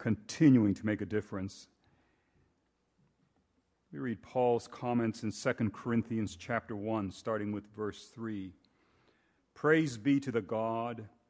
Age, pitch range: 40-59, 105-130 Hz